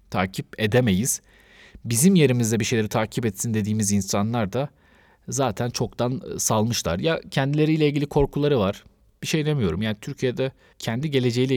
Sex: male